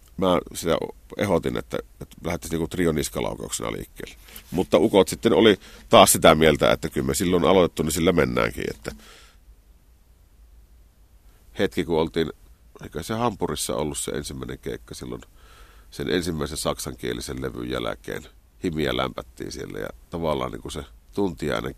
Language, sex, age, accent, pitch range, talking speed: Finnish, male, 50-69, native, 65-85 Hz, 135 wpm